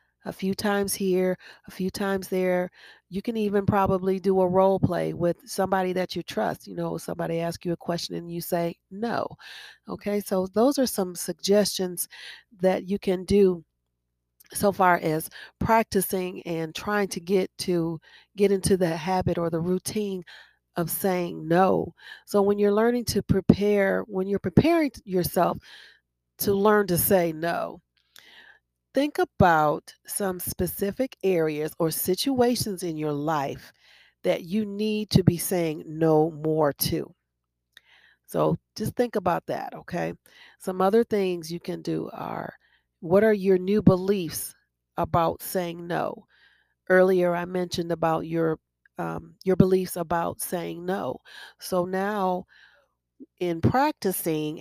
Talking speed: 145 wpm